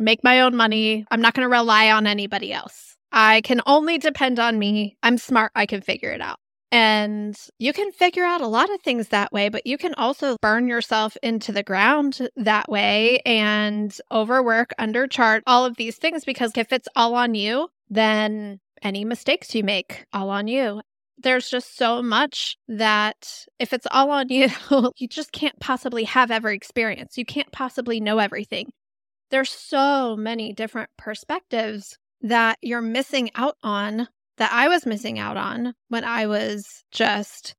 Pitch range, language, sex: 215-255 Hz, English, female